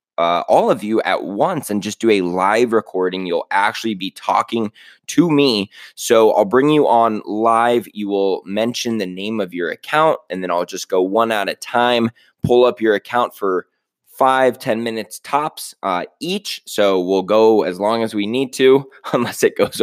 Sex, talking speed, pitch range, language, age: male, 190 wpm, 105-135 Hz, English, 20-39